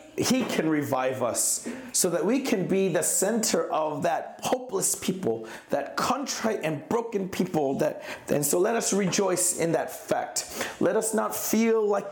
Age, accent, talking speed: 40-59, American, 170 wpm